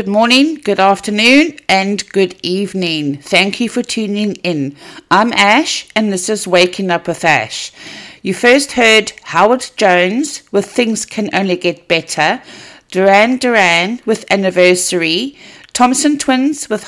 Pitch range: 180-245 Hz